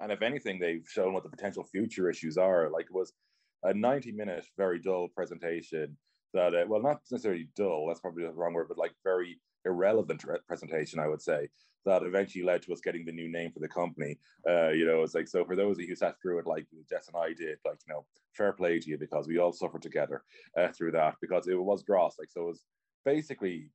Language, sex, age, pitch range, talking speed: English, male, 30-49, 85-95 Hz, 235 wpm